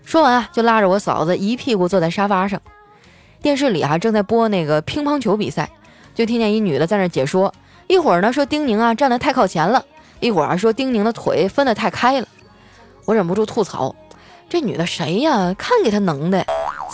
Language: Chinese